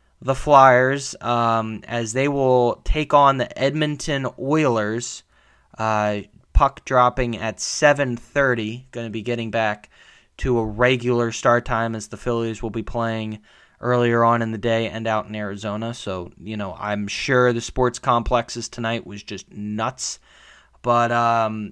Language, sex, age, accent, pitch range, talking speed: English, male, 20-39, American, 110-130 Hz, 155 wpm